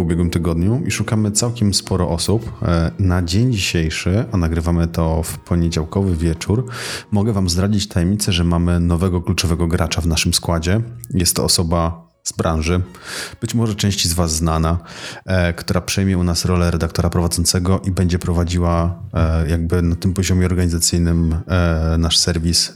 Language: Polish